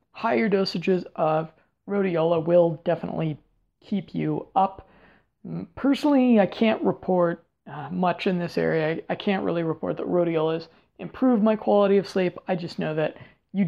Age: 20-39